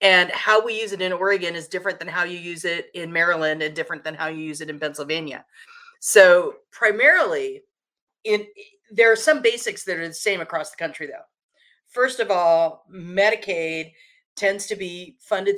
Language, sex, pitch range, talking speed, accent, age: English, female, 165-235 Hz, 180 wpm, American, 40-59